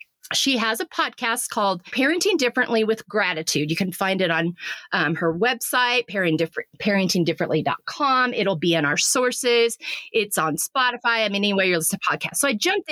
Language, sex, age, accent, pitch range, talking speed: English, female, 30-49, American, 185-255 Hz, 175 wpm